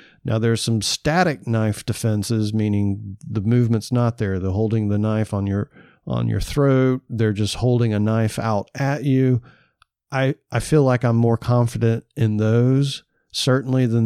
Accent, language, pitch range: American, English, 110-130 Hz